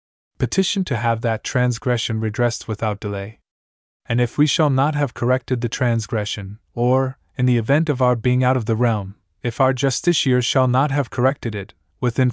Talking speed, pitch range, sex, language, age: 180 wpm, 110-135 Hz, male, English, 30-49